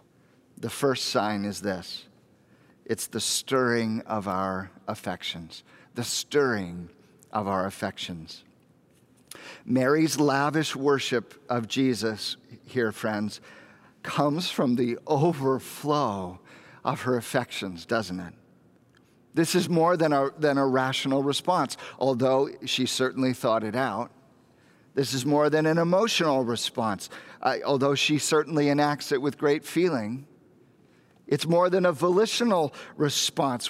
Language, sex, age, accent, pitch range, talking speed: English, male, 50-69, American, 130-180 Hz, 120 wpm